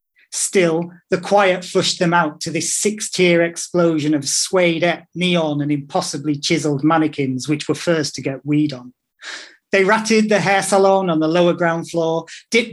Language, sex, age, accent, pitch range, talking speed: English, male, 40-59, British, 160-205 Hz, 170 wpm